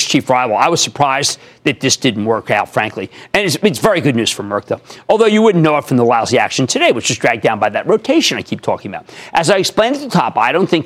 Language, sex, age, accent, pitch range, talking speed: English, male, 40-59, American, 135-190 Hz, 275 wpm